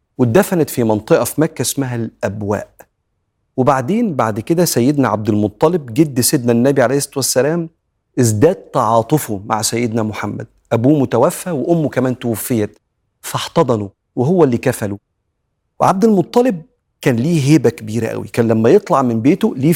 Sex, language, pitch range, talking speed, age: male, Arabic, 115-150 Hz, 140 wpm, 40-59